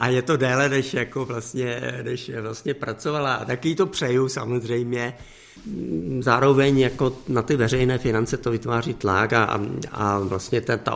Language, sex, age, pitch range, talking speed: Czech, male, 50-69, 105-120 Hz, 150 wpm